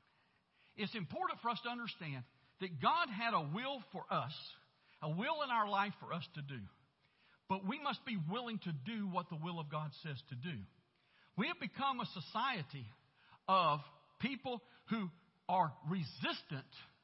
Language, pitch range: English, 155-230 Hz